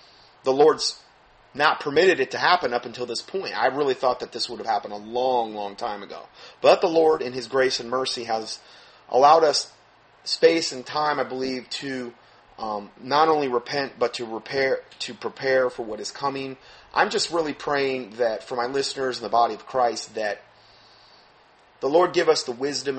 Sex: male